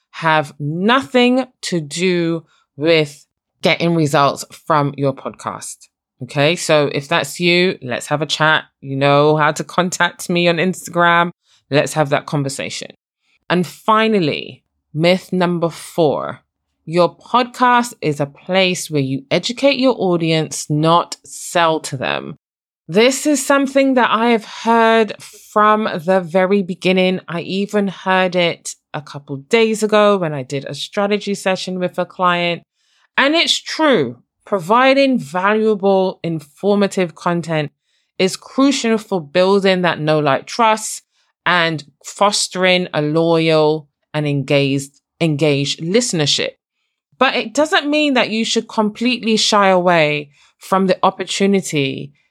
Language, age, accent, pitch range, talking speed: English, 20-39, British, 150-210 Hz, 130 wpm